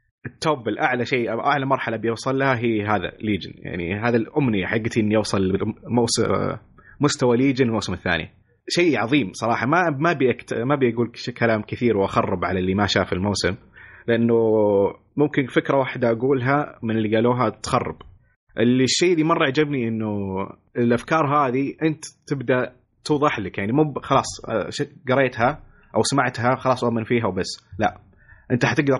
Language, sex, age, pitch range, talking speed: Arabic, male, 30-49, 105-135 Hz, 145 wpm